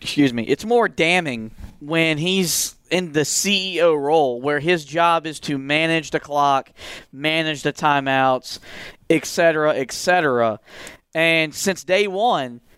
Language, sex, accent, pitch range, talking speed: English, male, American, 150-210 Hz, 140 wpm